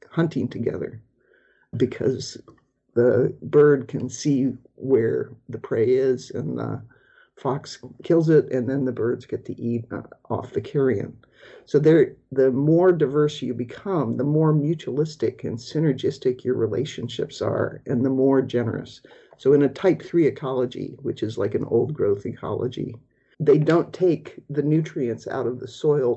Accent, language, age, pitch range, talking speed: American, English, 50-69, 125-150 Hz, 155 wpm